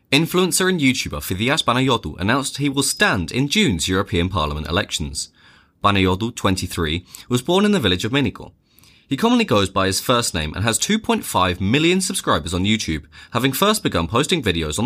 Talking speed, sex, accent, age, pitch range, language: 175 wpm, male, British, 20-39, 90-145 Hz, English